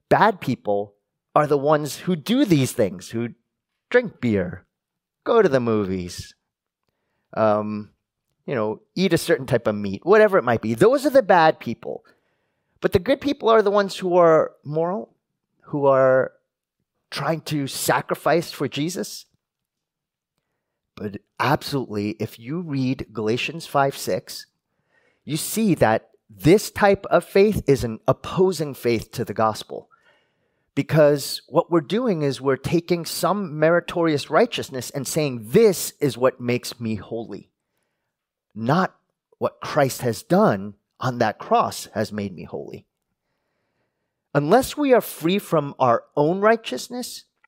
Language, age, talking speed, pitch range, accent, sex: English, 30-49, 140 wpm, 115-175 Hz, American, male